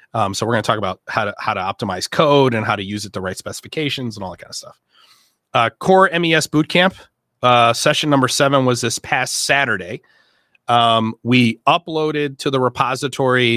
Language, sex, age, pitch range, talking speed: English, male, 30-49, 115-150 Hz, 200 wpm